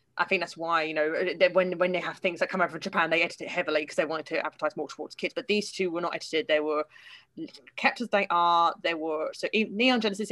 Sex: female